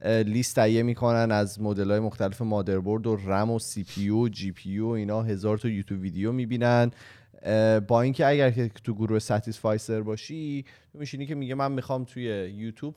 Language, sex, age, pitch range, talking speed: Persian, male, 30-49, 105-135 Hz, 175 wpm